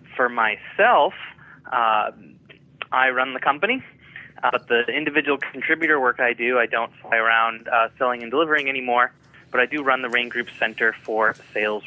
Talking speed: 170 wpm